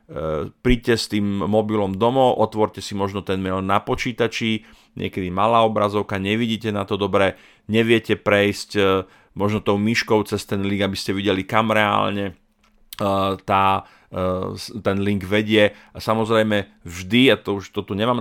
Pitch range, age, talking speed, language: 100-115 Hz, 40-59, 150 wpm, Slovak